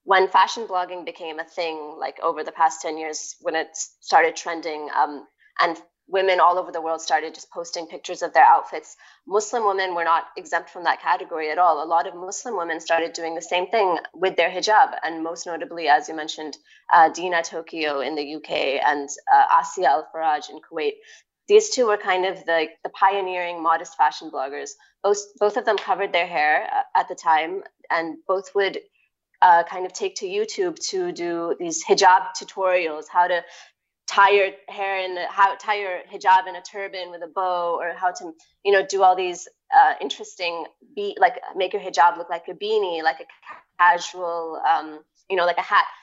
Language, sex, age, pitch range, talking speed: English, female, 20-39, 165-225 Hz, 200 wpm